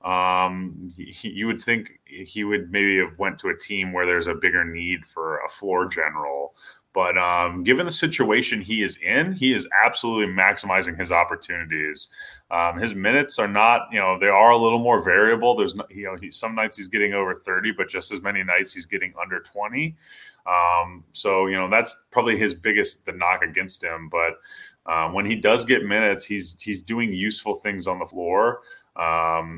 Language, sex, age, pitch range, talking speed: English, male, 20-39, 90-120 Hz, 195 wpm